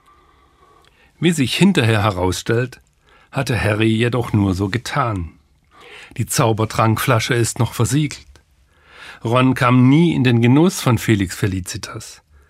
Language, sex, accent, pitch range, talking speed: German, male, German, 80-120 Hz, 115 wpm